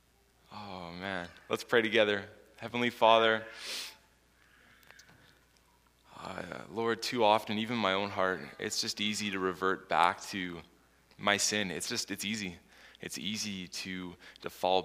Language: English